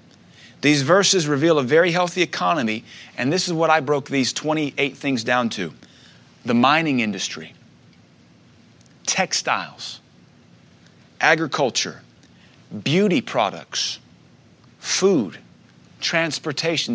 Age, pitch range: 30-49, 125-165 Hz